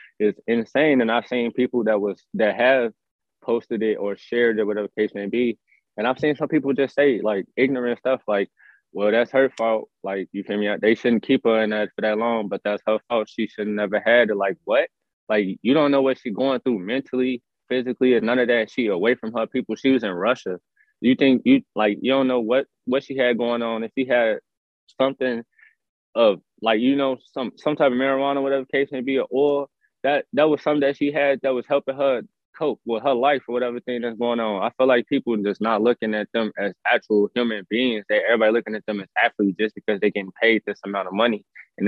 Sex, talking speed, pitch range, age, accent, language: male, 240 wpm, 105-130 Hz, 20-39, American, English